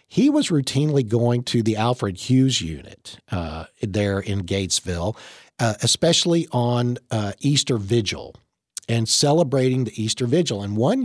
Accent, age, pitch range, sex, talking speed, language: American, 50-69, 100-130 Hz, male, 140 wpm, English